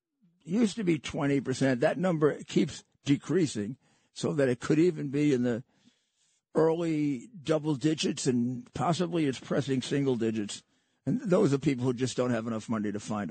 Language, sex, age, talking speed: English, male, 50-69, 175 wpm